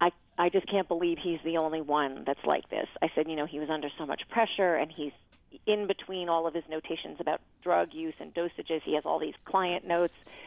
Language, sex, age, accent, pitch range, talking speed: English, female, 40-59, American, 155-185 Hz, 230 wpm